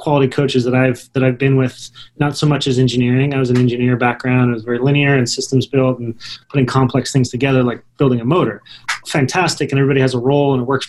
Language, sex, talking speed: English, male, 235 wpm